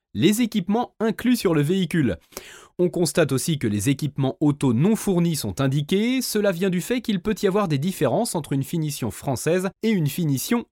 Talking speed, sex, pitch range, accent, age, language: 190 wpm, male, 140-210 Hz, French, 30-49, French